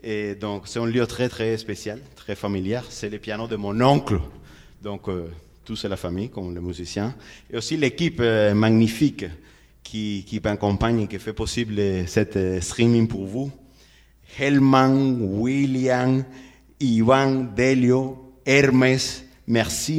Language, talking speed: French, 140 wpm